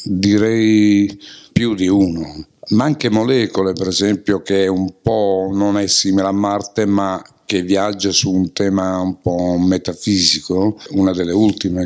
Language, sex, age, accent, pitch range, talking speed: Italian, male, 60-79, native, 100-120 Hz, 150 wpm